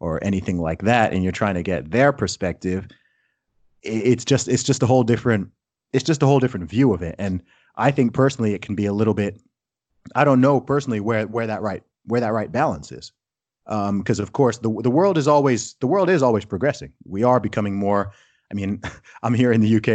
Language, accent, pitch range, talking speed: English, American, 100-120 Hz, 225 wpm